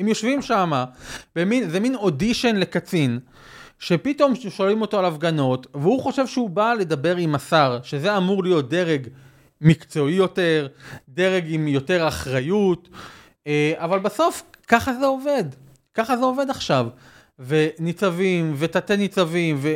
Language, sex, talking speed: Hebrew, male, 130 wpm